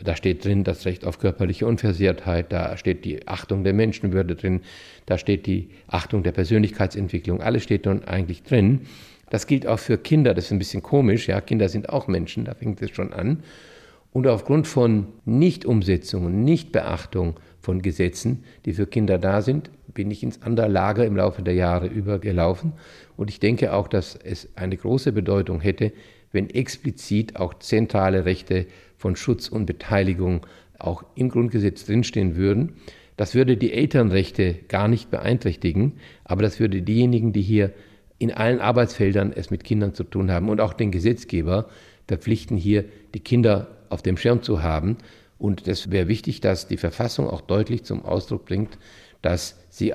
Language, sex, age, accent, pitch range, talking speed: German, male, 50-69, German, 90-110 Hz, 170 wpm